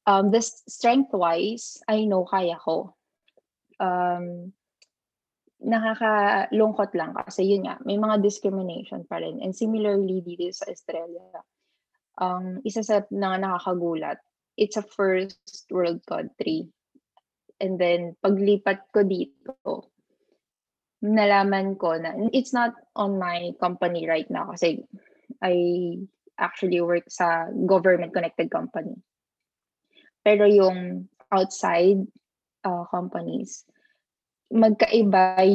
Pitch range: 175-210 Hz